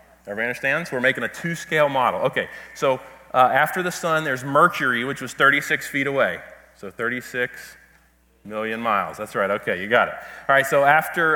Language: English